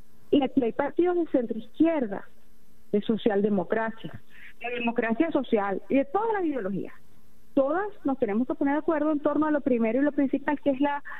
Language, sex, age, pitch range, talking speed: Spanish, female, 40-59, 230-310 Hz, 190 wpm